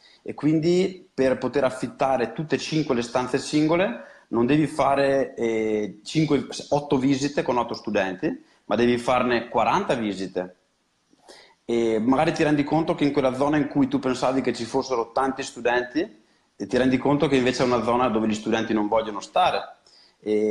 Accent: native